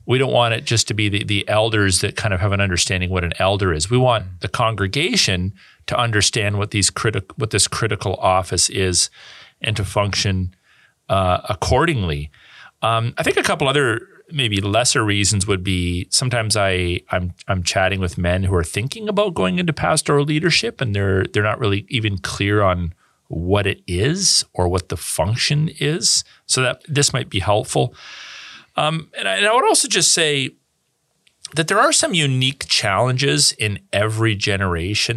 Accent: American